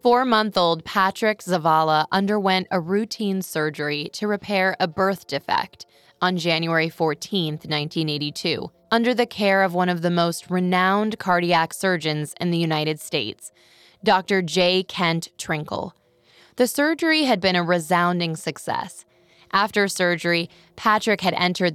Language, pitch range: English, 165-205 Hz